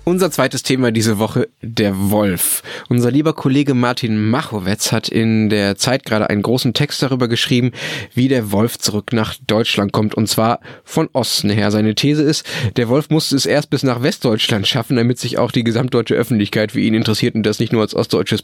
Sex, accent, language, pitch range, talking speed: male, German, German, 110-140 Hz, 200 wpm